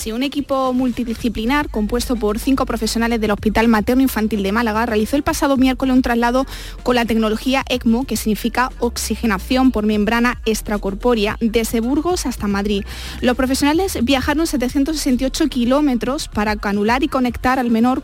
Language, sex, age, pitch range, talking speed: Spanish, female, 20-39, 220-270 Hz, 145 wpm